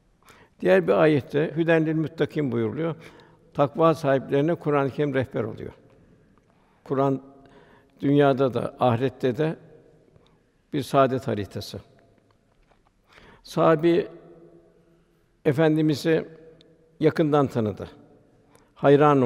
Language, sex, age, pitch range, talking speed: Turkish, male, 60-79, 135-160 Hz, 75 wpm